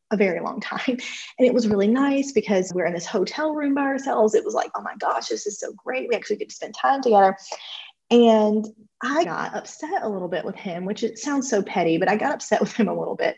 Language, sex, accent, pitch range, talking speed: English, female, American, 195-245 Hz, 260 wpm